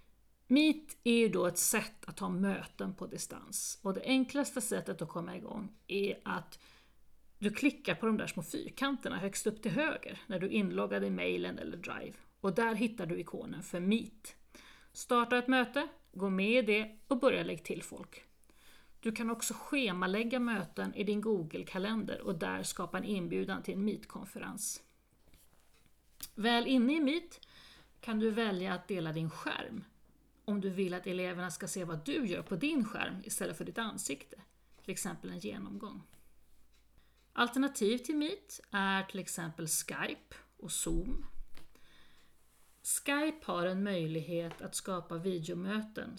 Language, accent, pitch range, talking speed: Swedish, native, 185-240 Hz, 160 wpm